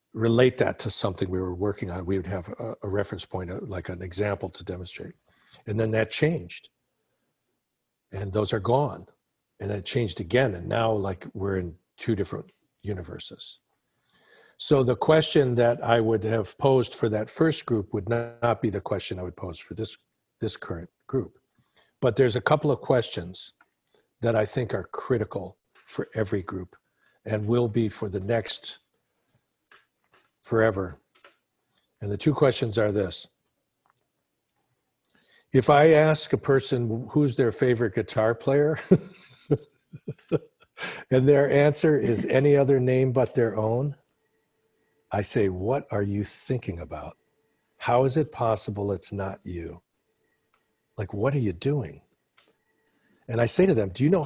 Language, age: English, 60-79